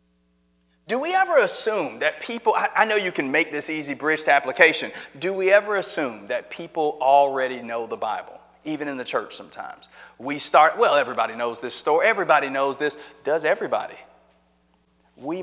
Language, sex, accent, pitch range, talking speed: English, male, American, 155-225 Hz, 170 wpm